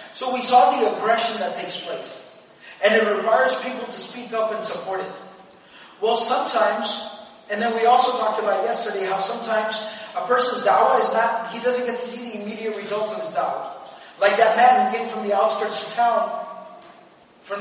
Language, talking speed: English, 190 wpm